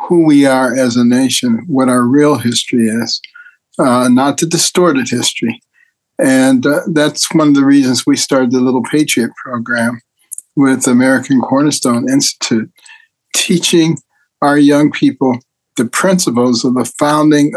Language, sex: English, male